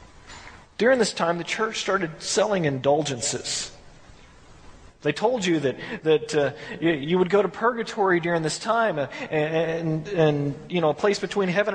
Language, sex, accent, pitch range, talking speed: English, male, American, 170-230 Hz, 165 wpm